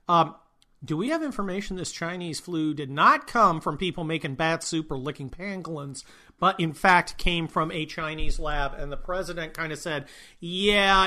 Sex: male